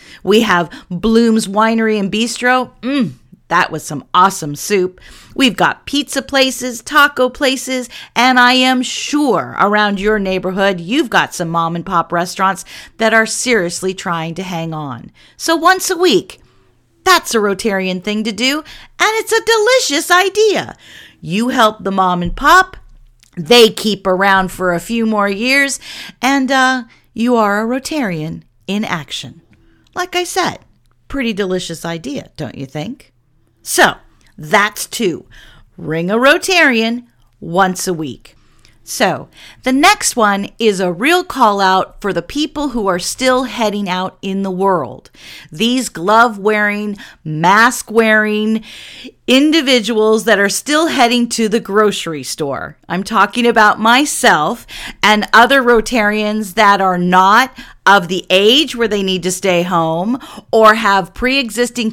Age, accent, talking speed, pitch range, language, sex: 40-59, American, 140 wpm, 185-255 Hz, English, female